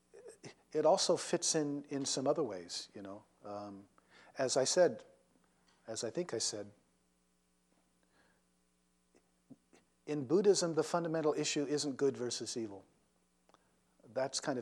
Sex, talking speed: male, 125 wpm